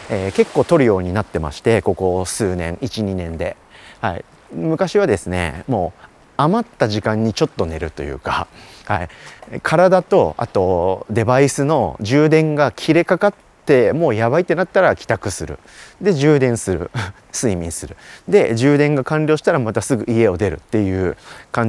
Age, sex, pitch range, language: 30-49, male, 95-135 Hz, Japanese